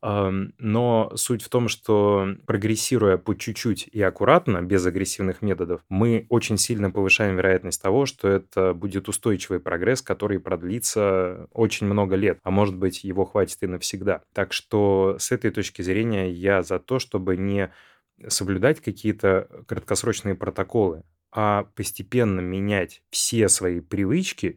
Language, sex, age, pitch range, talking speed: Russian, male, 20-39, 95-110 Hz, 140 wpm